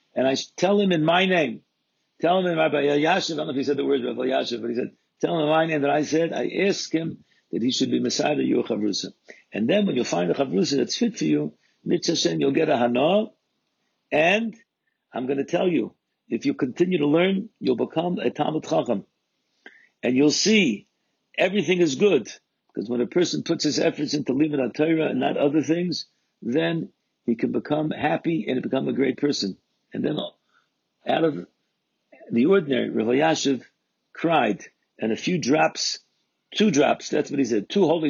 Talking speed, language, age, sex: 195 wpm, English, 60-79, male